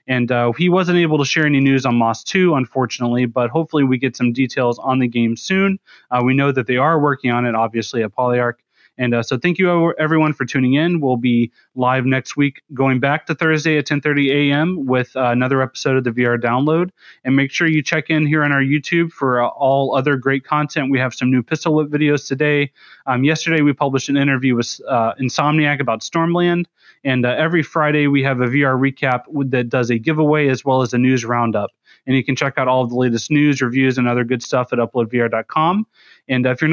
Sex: male